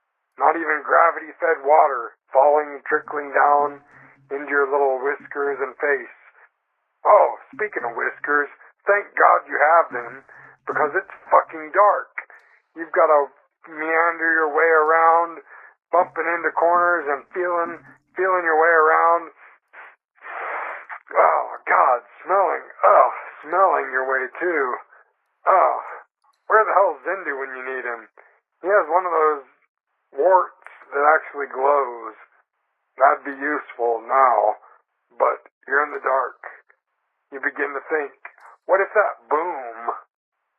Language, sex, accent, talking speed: English, male, American, 125 wpm